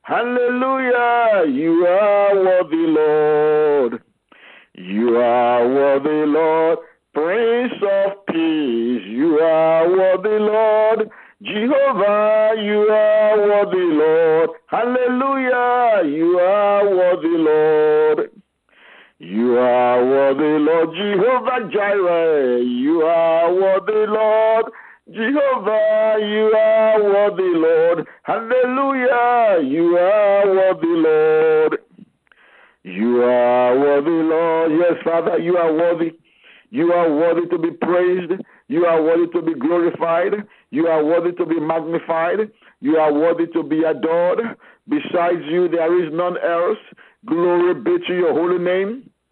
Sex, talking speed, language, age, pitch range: male, 110 wpm, English, 50-69, 165-220 Hz